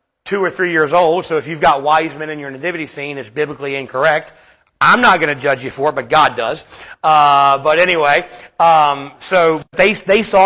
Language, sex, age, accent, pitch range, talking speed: English, male, 40-59, American, 170-210 Hz, 210 wpm